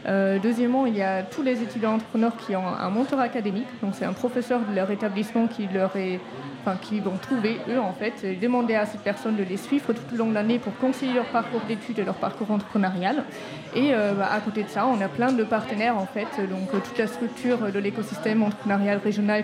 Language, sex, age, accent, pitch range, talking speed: French, female, 20-39, French, 200-235 Hz, 235 wpm